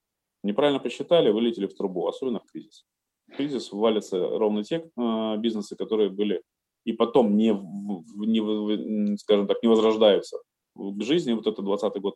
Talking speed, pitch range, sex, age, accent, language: 150 wpm, 105-130 Hz, male, 20-39, native, Russian